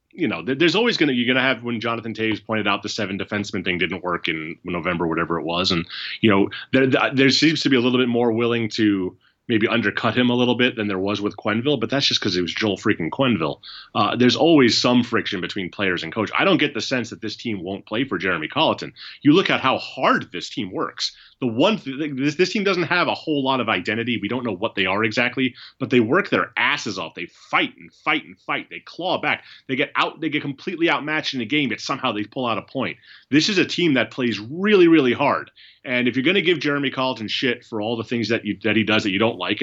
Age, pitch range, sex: 30-49, 105-135 Hz, male